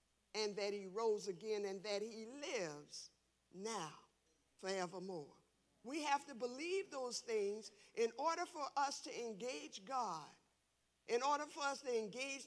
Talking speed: 145 wpm